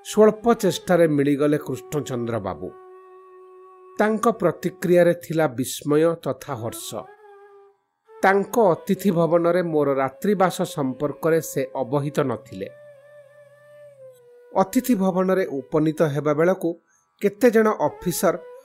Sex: male